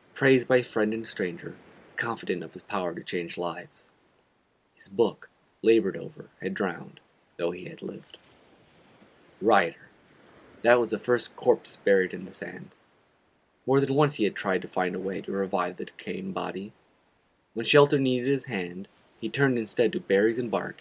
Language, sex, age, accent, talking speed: English, male, 30-49, American, 170 wpm